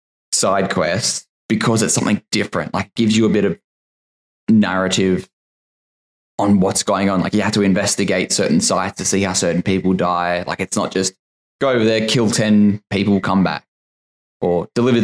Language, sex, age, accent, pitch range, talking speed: English, male, 10-29, Australian, 95-110 Hz, 175 wpm